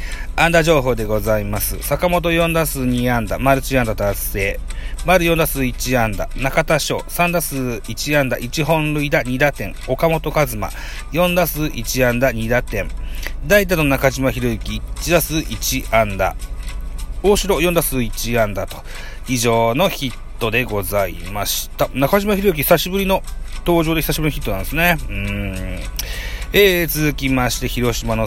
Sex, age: male, 40-59